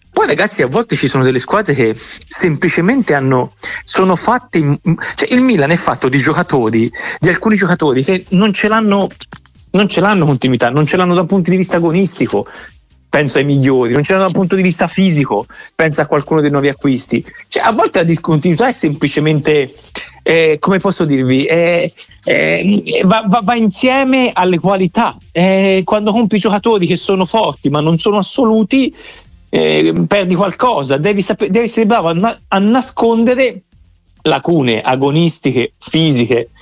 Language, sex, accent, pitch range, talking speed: Italian, male, native, 135-195 Hz, 160 wpm